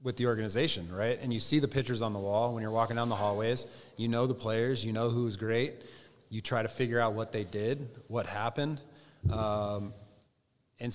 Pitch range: 115-130 Hz